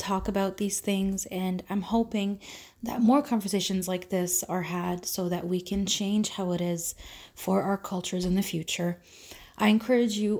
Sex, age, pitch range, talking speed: female, 20-39, 165-195 Hz, 180 wpm